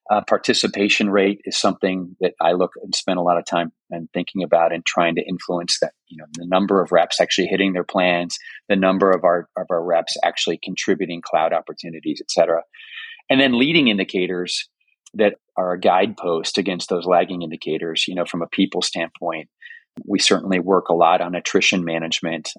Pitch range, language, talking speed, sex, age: 85-95 Hz, English, 190 wpm, male, 30-49